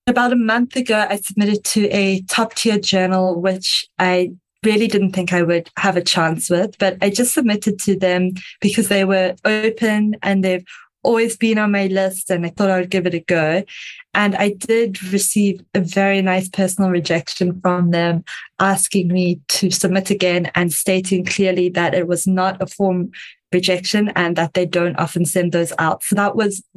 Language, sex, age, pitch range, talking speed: English, female, 20-39, 180-210 Hz, 190 wpm